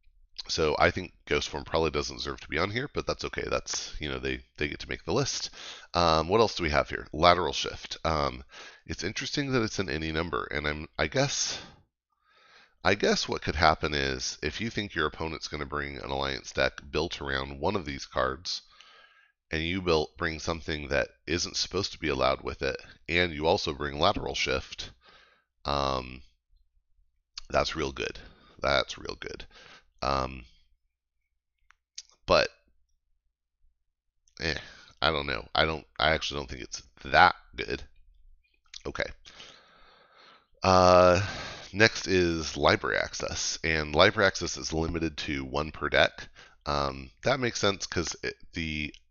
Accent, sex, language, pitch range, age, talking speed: American, male, English, 65-80 Hz, 30-49, 160 wpm